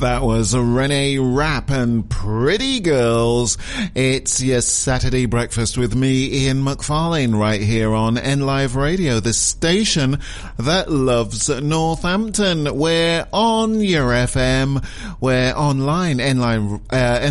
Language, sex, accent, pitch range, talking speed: English, male, British, 120-160 Hz, 110 wpm